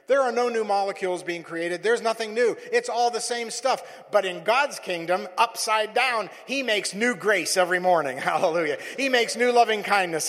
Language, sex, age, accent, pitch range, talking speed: English, male, 50-69, American, 195-295 Hz, 190 wpm